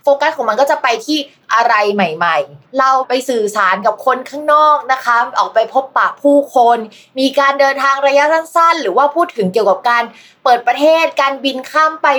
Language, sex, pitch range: Thai, female, 205-275 Hz